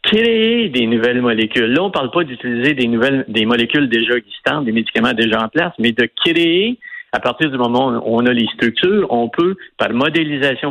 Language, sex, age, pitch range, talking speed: French, male, 50-69, 115-155 Hz, 205 wpm